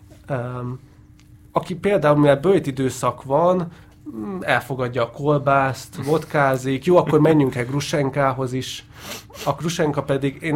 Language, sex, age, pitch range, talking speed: Hungarian, male, 30-49, 120-145 Hz, 115 wpm